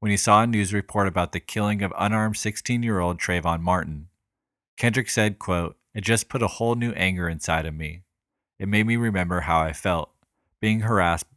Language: English